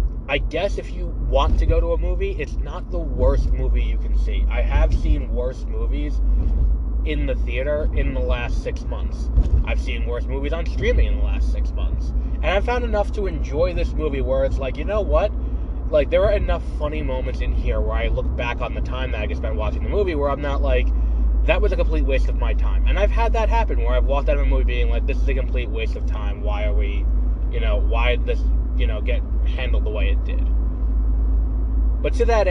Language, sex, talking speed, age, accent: English, male, 240 wpm, 20-39, American